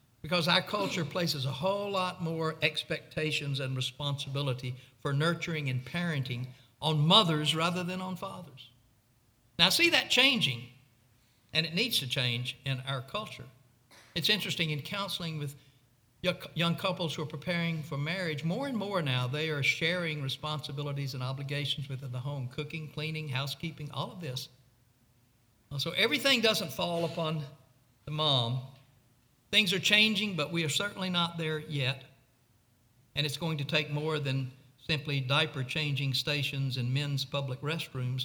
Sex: male